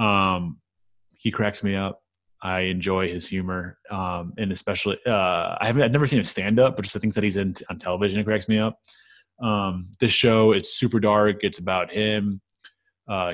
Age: 20-39